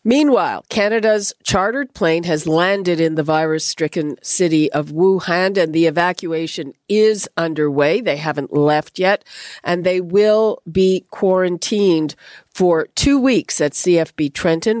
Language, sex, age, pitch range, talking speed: English, female, 50-69, 160-210 Hz, 130 wpm